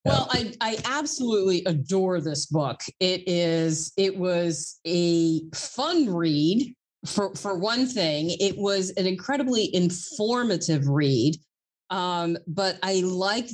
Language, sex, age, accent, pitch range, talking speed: English, female, 30-49, American, 165-210 Hz, 125 wpm